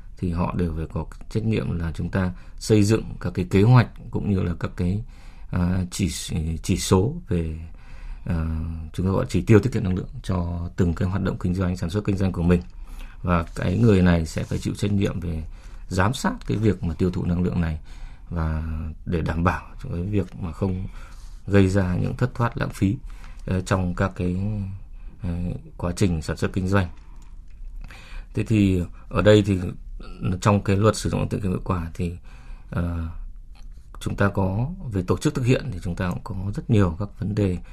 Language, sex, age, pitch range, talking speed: Vietnamese, male, 20-39, 85-105 Hz, 205 wpm